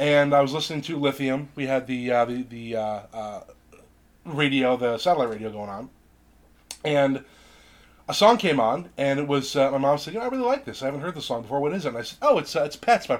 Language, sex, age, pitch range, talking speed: English, male, 30-49, 130-165 Hz, 260 wpm